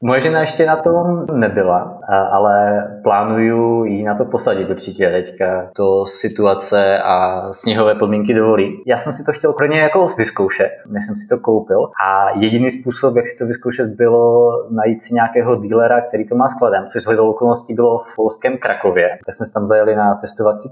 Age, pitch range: 20-39, 100-125 Hz